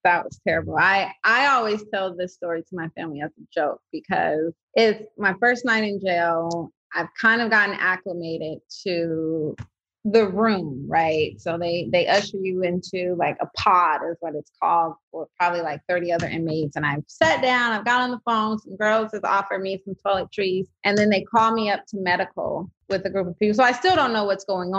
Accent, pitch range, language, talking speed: American, 170-200 Hz, English, 210 wpm